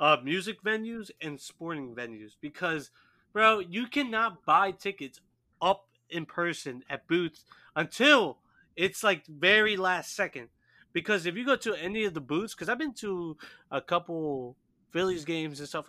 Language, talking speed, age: English, 160 wpm, 30-49